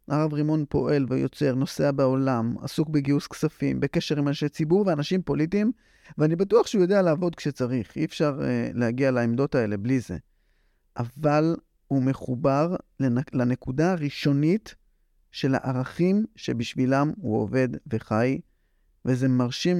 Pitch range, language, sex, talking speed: 120-155 Hz, Hebrew, male, 130 wpm